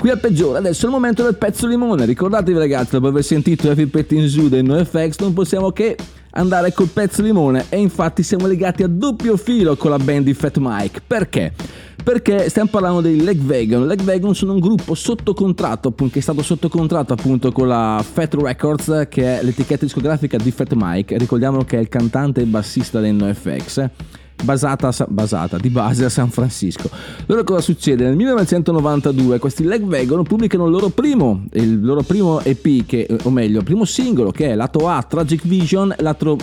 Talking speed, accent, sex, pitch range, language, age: 195 wpm, native, male, 125-180 Hz, Italian, 30-49